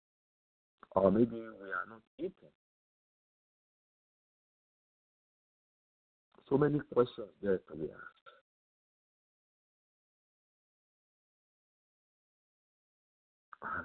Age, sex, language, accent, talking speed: 50-69, male, English, French, 55 wpm